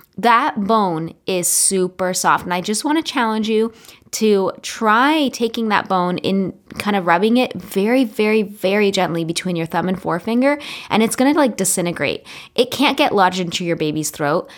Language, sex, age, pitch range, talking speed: English, female, 20-39, 170-220 Hz, 185 wpm